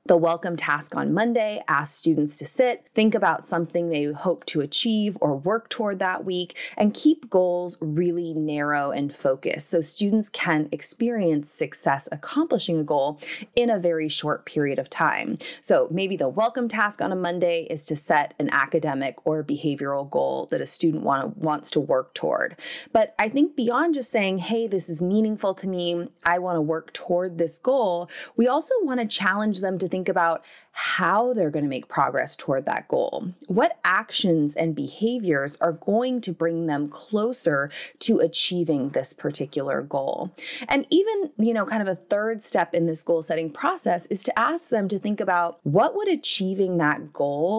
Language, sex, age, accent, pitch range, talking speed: English, female, 30-49, American, 160-225 Hz, 185 wpm